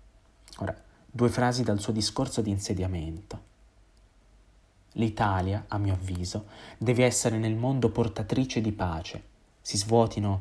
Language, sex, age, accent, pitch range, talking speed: Italian, male, 30-49, native, 95-110 Hz, 120 wpm